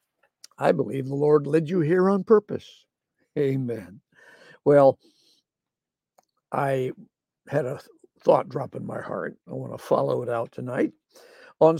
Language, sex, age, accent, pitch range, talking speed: English, male, 60-79, American, 135-200 Hz, 135 wpm